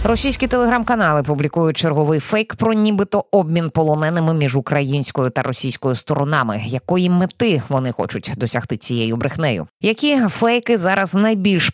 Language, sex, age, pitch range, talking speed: Ukrainian, female, 20-39, 145-225 Hz, 130 wpm